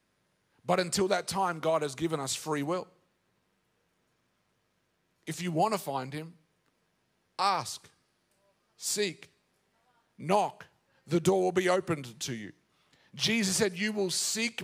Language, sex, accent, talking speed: English, male, Australian, 125 wpm